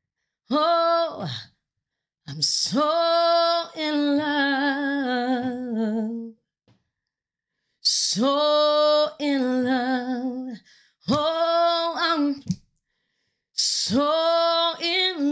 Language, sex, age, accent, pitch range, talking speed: English, female, 20-39, American, 225-295 Hz, 45 wpm